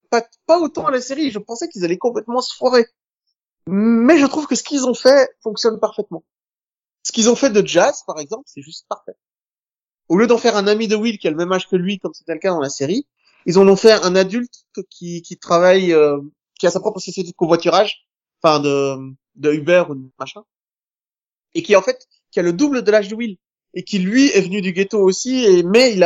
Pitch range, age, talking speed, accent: 170-230 Hz, 30-49, 235 wpm, French